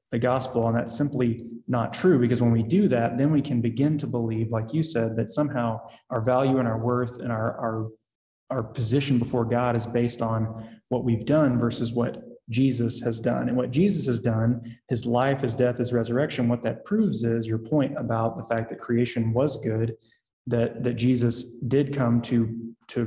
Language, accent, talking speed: English, American, 200 wpm